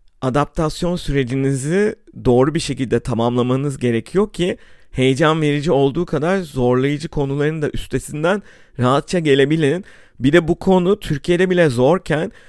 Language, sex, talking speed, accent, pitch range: Turkish, male, 120 wpm, native, 125-160 Hz